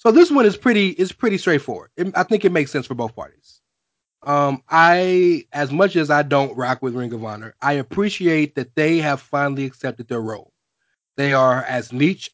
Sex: male